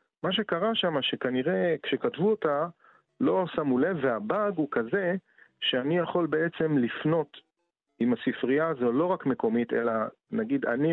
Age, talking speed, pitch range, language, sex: 40-59, 135 wpm, 120-185 Hz, Hebrew, male